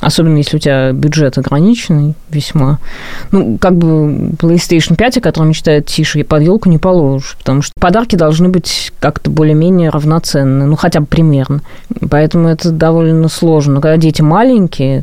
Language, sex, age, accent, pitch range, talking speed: Russian, female, 20-39, native, 145-175 Hz, 165 wpm